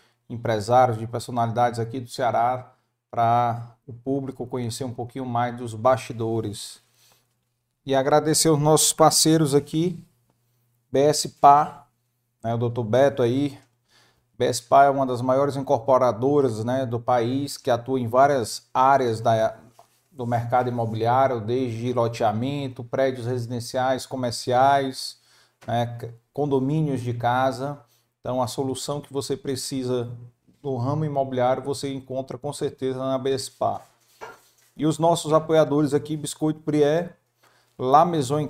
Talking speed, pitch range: 120 wpm, 120-150 Hz